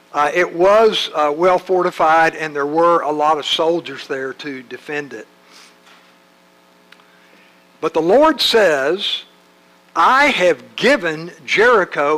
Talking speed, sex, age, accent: 125 wpm, male, 60-79, American